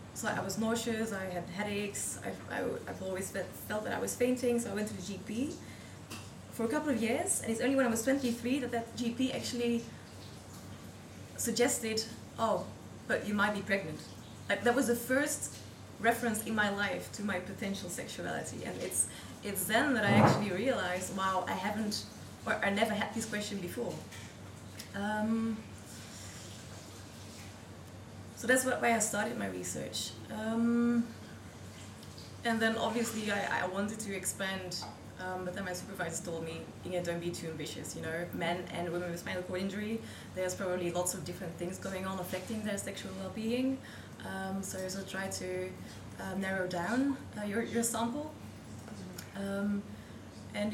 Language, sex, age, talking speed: English, female, 20-39, 165 wpm